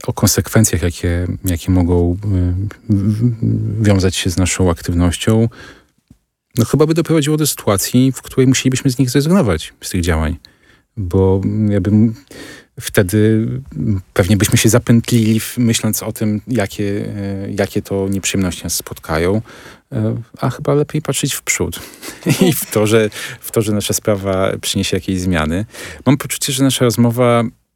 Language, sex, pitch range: Polish, male, 95-125 Hz